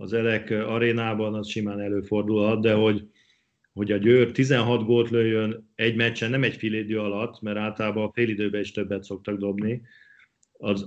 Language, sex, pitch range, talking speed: Hungarian, male, 105-120 Hz, 160 wpm